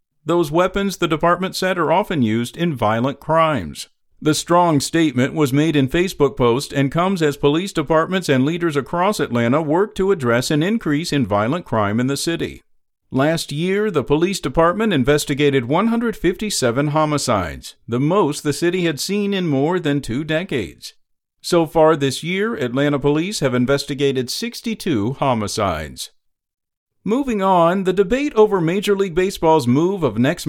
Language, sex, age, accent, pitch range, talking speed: English, male, 50-69, American, 135-180 Hz, 155 wpm